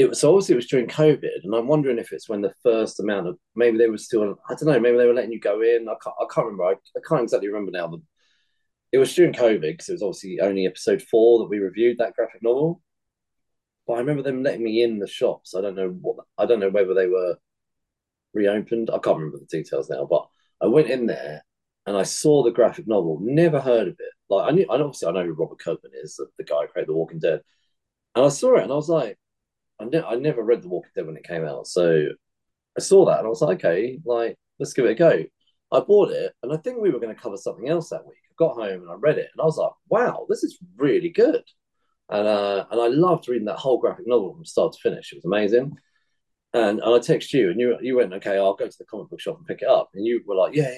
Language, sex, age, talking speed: English, male, 30-49, 270 wpm